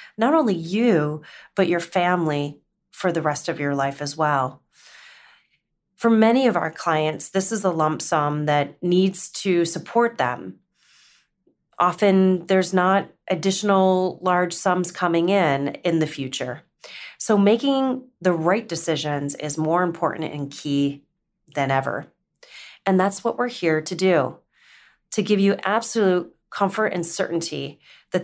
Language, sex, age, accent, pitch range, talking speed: English, female, 30-49, American, 150-195 Hz, 140 wpm